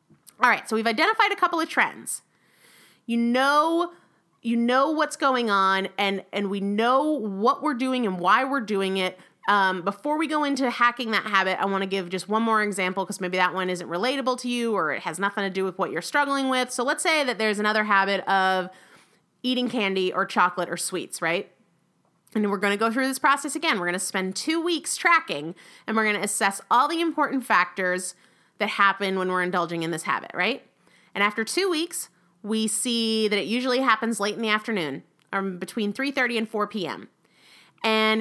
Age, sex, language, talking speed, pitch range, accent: 30-49, female, English, 205 wpm, 195-265 Hz, American